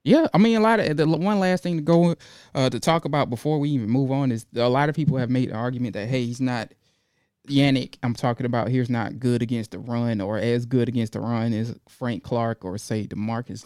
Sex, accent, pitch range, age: male, American, 125-190 Hz, 20-39